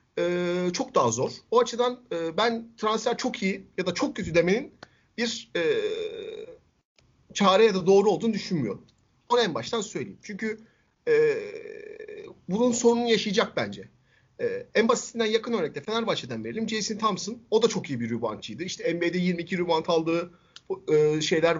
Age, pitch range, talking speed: 50-69, 175-255 Hz, 155 wpm